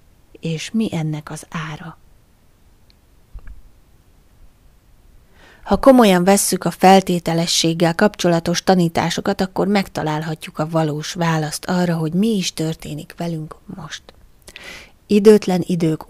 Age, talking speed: 30-49, 95 wpm